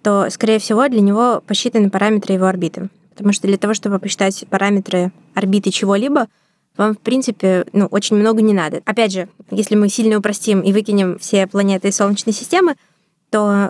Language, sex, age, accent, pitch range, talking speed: Russian, female, 20-39, native, 185-210 Hz, 175 wpm